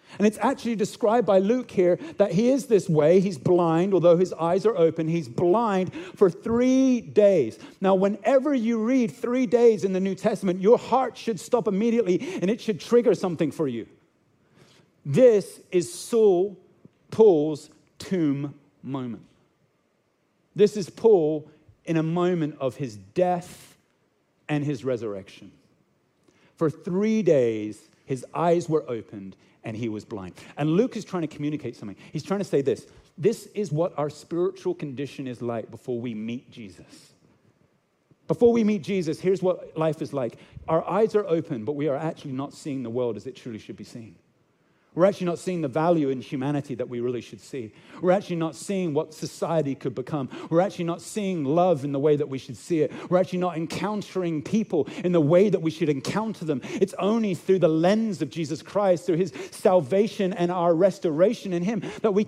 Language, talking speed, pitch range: English, 185 wpm, 150-205 Hz